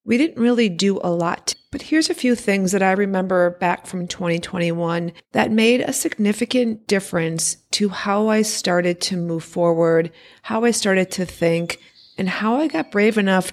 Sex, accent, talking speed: female, American, 175 wpm